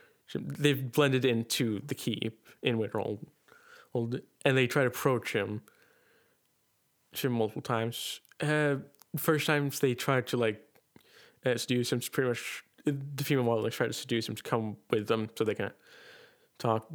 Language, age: English, 20-39